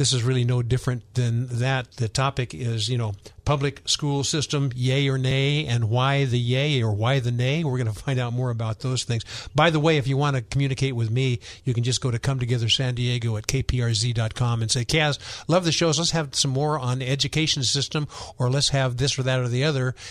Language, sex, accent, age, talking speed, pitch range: English, male, American, 50-69, 235 wpm, 120-140 Hz